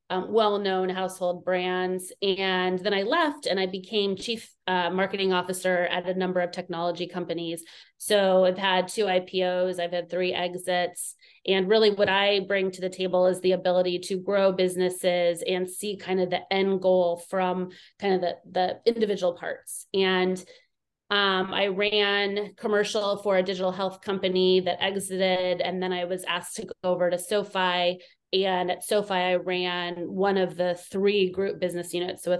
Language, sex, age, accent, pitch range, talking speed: English, female, 30-49, American, 180-195 Hz, 175 wpm